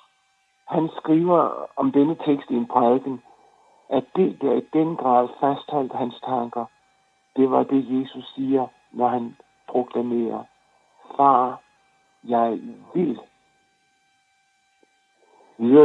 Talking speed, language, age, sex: 110 wpm, Danish, 60-79, male